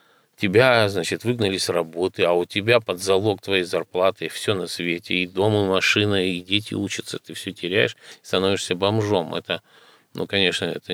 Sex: male